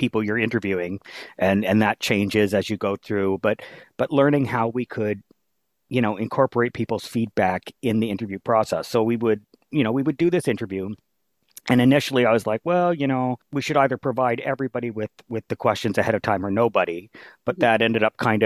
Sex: male